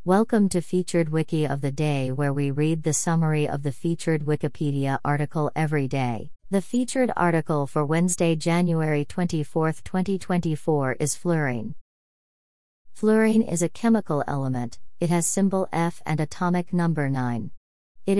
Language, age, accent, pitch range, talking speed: English, 40-59, American, 145-175 Hz, 140 wpm